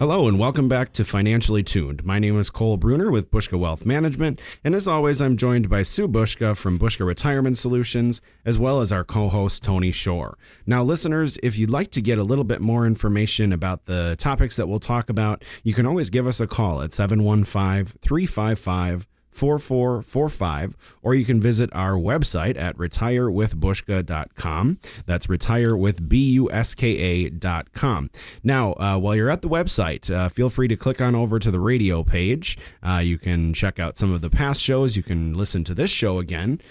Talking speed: 185 wpm